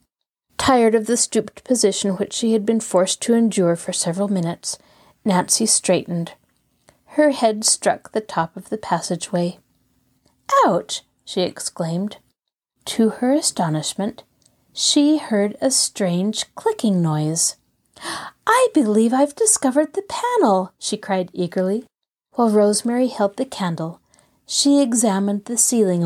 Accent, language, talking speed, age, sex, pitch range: American, English, 125 wpm, 40-59, female, 185-255 Hz